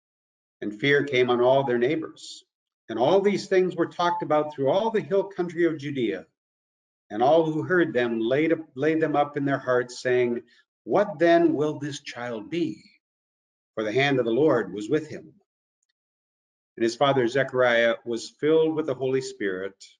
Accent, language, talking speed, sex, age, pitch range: American, English, 175 wpm, male, 50-69, 120-165 Hz